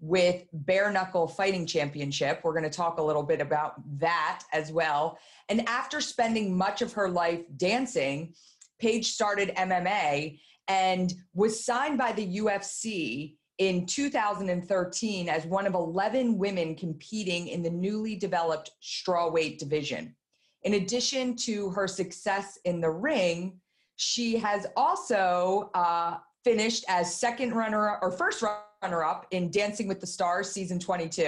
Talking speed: 140 wpm